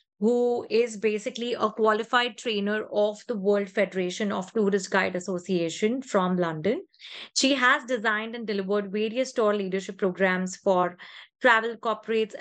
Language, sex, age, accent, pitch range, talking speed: English, female, 20-39, Indian, 205-250 Hz, 135 wpm